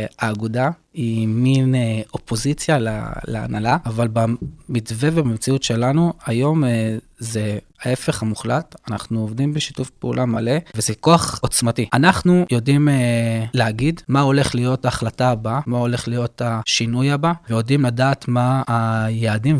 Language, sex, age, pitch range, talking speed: Hebrew, male, 20-39, 115-145 Hz, 120 wpm